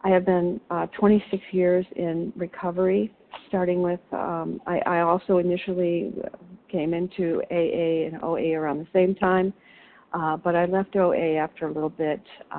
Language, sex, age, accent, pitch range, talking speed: English, female, 50-69, American, 145-180 Hz, 155 wpm